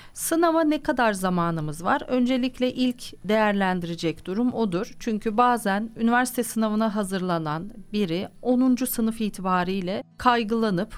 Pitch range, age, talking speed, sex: 185-260 Hz, 40-59, 110 wpm, female